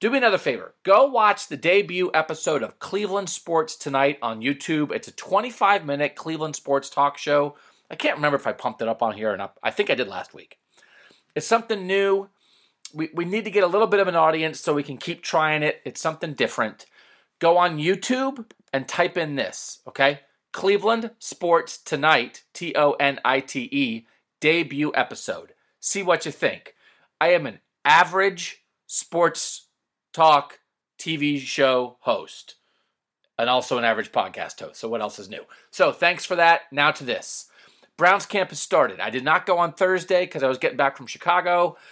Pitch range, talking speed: 140-190 Hz, 180 wpm